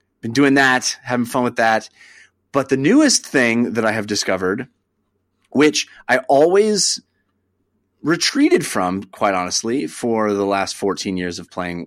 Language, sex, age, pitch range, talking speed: English, male, 30-49, 95-135 Hz, 145 wpm